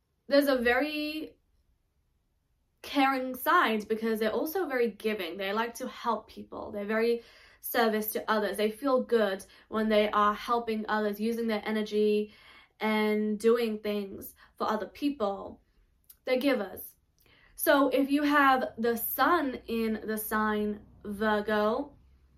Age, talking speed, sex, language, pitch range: 10-29, 130 wpm, female, English, 210-240 Hz